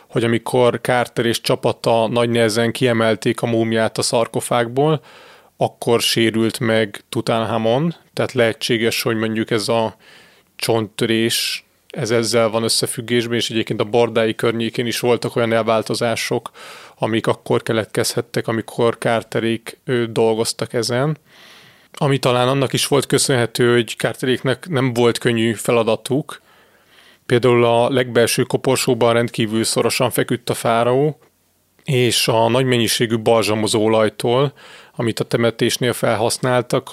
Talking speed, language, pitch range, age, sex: 120 wpm, Hungarian, 115-125 Hz, 30-49, male